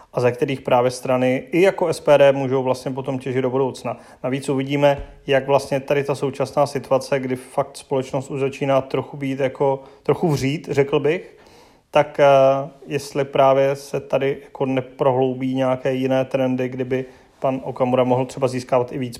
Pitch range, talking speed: 135-160 Hz, 165 wpm